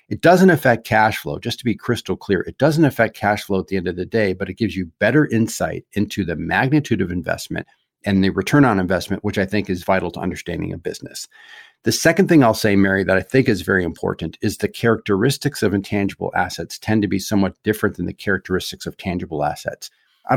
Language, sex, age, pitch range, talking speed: English, male, 50-69, 95-115 Hz, 225 wpm